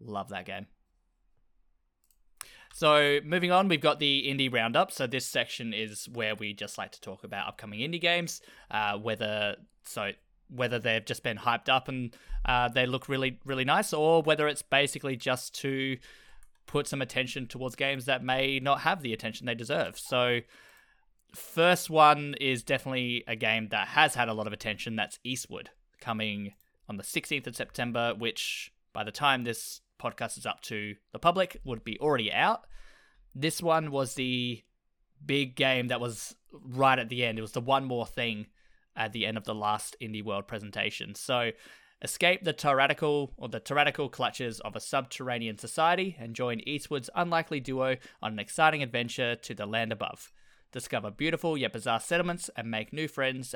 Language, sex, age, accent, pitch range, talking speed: English, male, 20-39, Australian, 110-145 Hz, 175 wpm